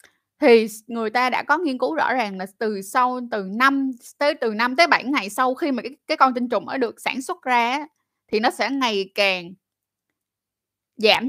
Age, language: 20-39, Vietnamese